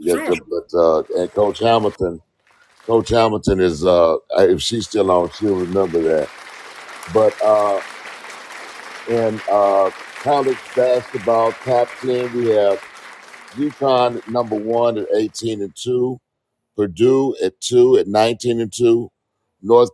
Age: 50-69